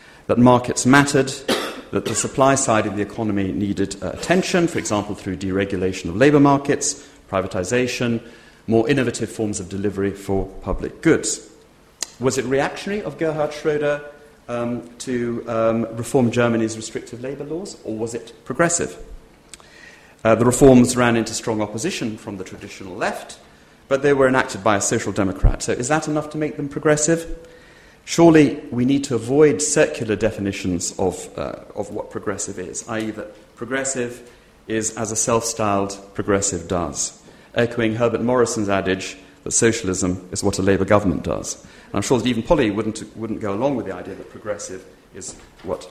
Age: 40-59